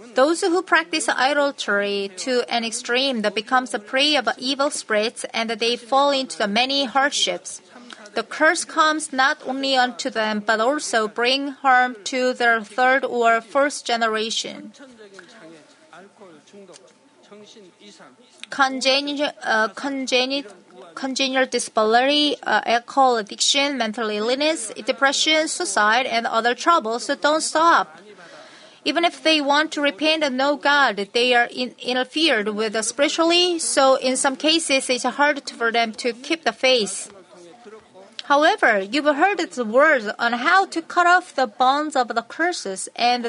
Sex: female